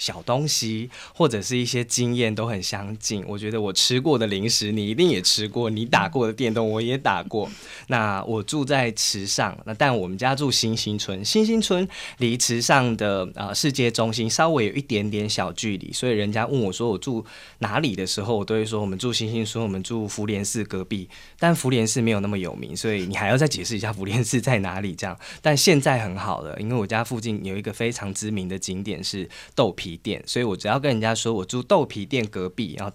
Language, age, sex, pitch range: Chinese, 20-39, male, 100-125 Hz